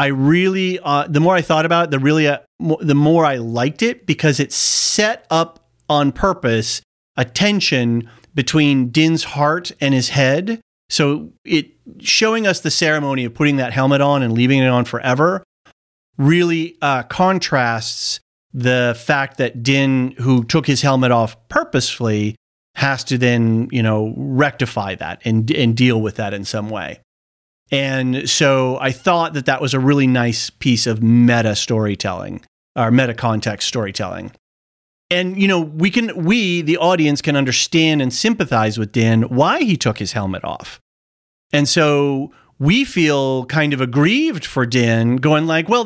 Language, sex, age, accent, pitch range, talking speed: English, male, 40-59, American, 115-160 Hz, 160 wpm